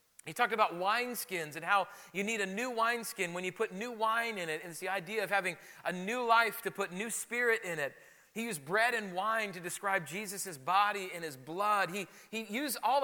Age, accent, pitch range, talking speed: 30-49, American, 195-245 Hz, 225 wpm